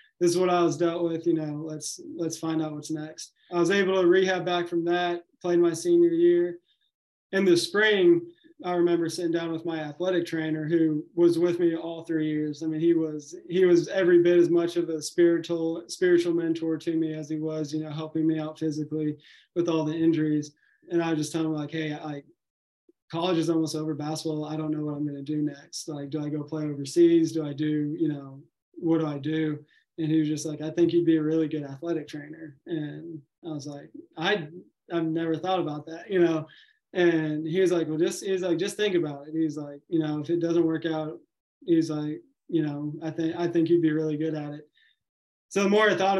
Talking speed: 235 wpm